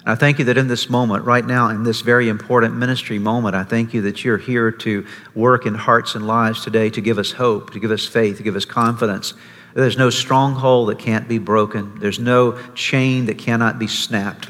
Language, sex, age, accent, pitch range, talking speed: English, male, 50-69, American, 110-130 Hz, 225 wpm